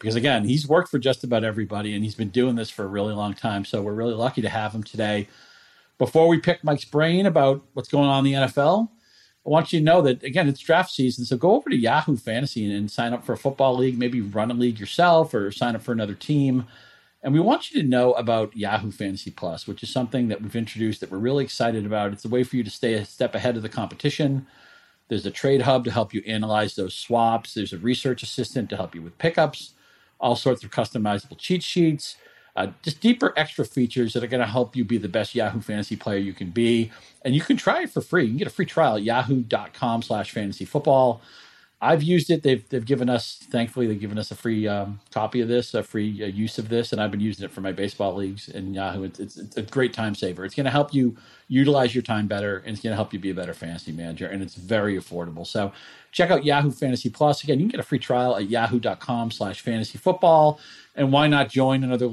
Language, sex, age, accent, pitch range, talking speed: English, male, 40-59, American, 105-135 Hz, 250 wpm